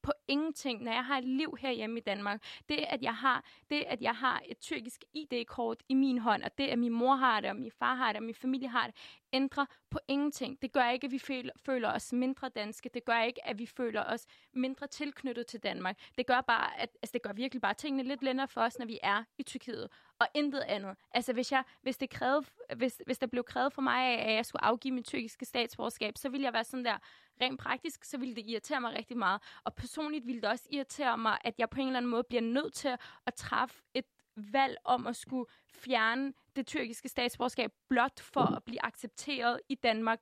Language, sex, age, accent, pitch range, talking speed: Danish, female, 20-39, native, 230-270 Hz, 235 wpm